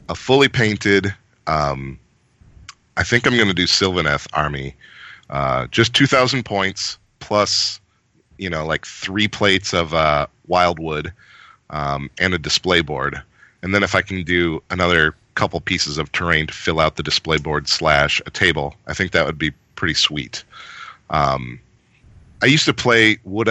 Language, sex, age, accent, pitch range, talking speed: English, male, 40-59, American, 85-105 Hz, 160 wpm